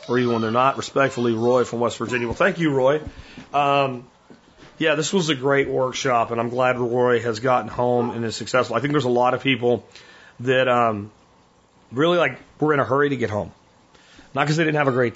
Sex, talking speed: male, 220 wpm